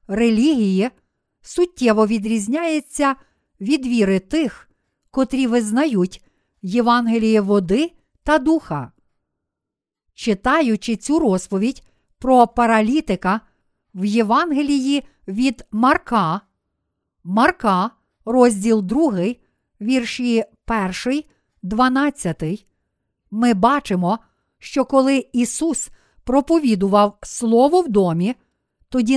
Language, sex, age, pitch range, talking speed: Ukrainian, female, 50-69, 220-275 Hz, 75 wpm